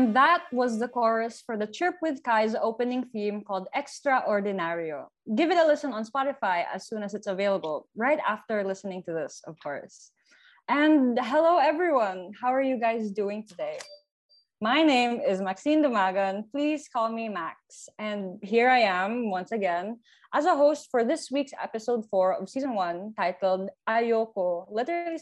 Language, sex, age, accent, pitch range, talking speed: Filipino, female, 20-39, native, 195-275 Hz, 165 wpm